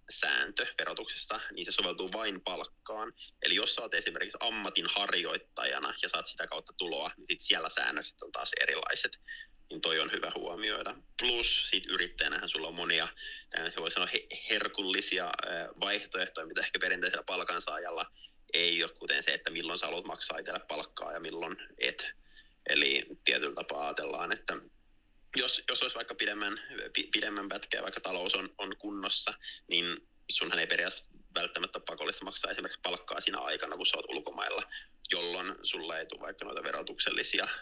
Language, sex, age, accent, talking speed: Finnish, male, 30-49, native, 155 wpm